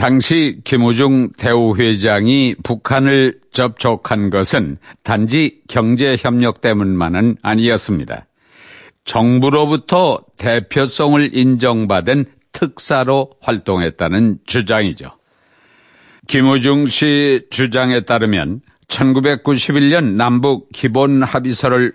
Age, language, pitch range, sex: 60-79, Korean, 115-140 Hz, male